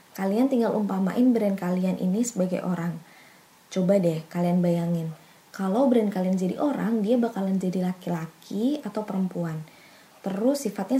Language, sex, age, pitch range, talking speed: Indonesian, female, 20-39, 180-225 Hz, 135 wpm